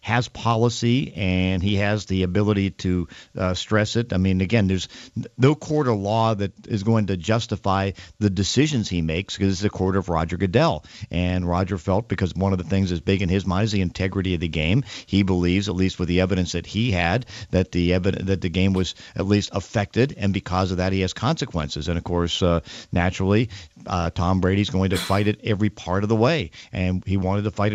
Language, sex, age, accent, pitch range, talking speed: English, male, 50-69, American, 95-115 Hz, 225 wpm